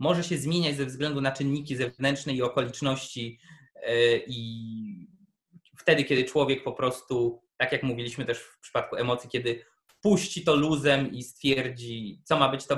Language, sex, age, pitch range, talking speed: Polish, male, 20-39, 130-160 Hz, 155 wpm